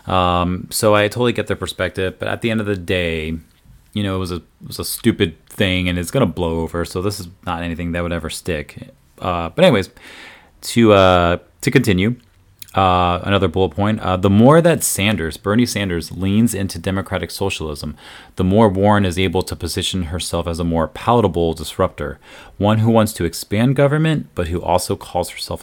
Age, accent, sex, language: 30-49, American, male, English